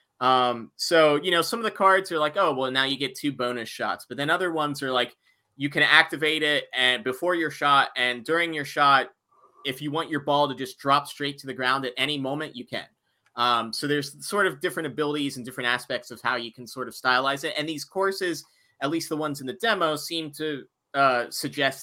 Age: 30-49